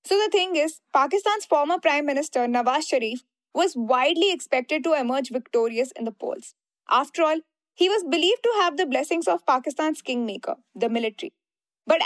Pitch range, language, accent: 270-350 Hz, English, Indian